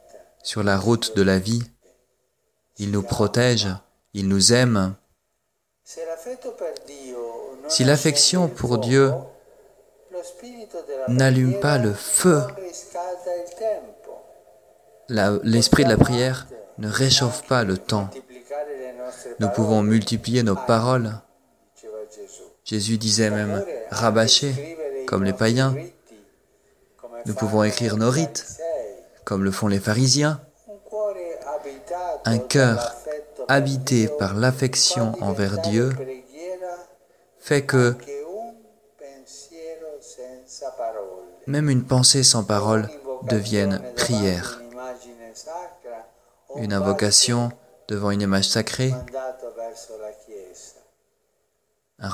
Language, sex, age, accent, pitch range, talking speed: French, male, 40-59, French, 110-140 Hz, 85 wpm